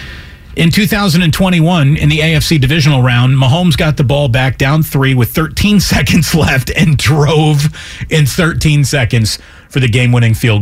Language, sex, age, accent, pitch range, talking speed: English, male, 40-59, American, 110-155 Hz, 155 wpm